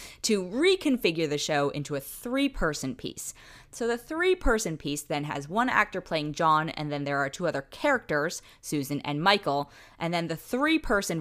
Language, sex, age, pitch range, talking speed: English, female, 20-39, 150-230 Hz, 170 wpm